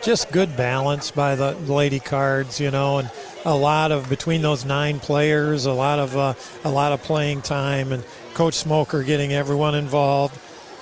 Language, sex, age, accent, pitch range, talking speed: English, male, 50-69, American, 145-170 Hz, 175 wpm